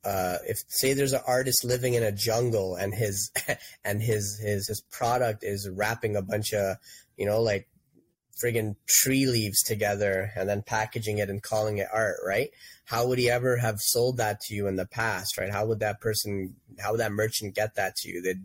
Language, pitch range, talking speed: English, 95-115 Hz, 210 wpm